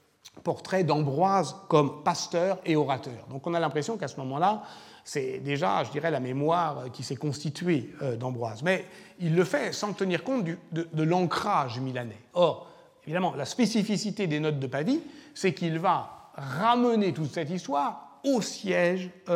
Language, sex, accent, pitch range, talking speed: French, male, French, 140-195 Hz, 165 wpm